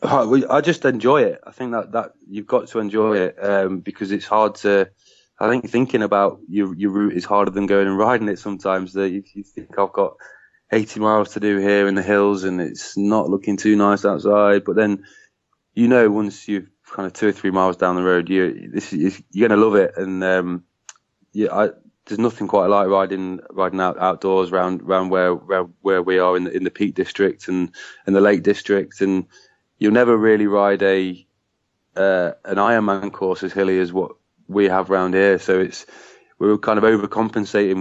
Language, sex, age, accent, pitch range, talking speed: English, male, 20-39, British, 95-105 Hz, 210 wpm